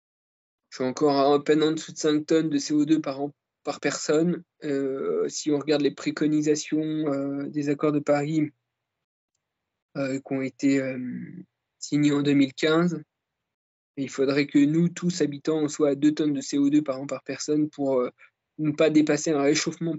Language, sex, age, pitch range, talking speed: French, male, 20-39, 135-155 Hz, 180 wpm